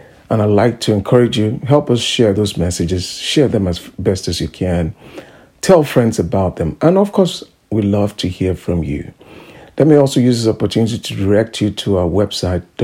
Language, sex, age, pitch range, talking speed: English, male, 50-69, 100-125 Hz, 200 wpm